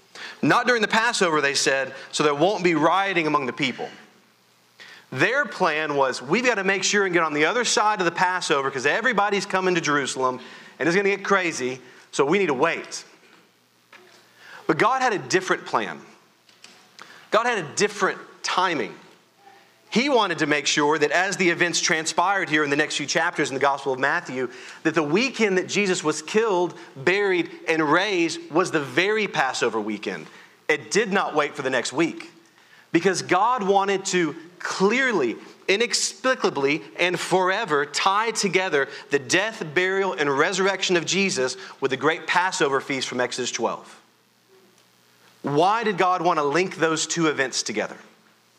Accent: American